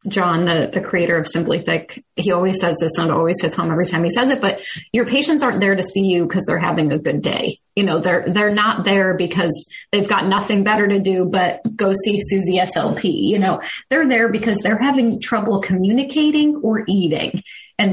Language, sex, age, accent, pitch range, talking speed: English, female, 30-49, American, 180-235 Hz, 215 wpm